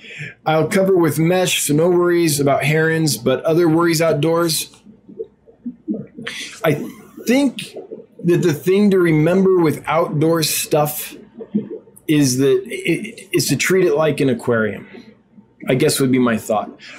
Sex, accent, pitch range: male, American, 135-190 Hz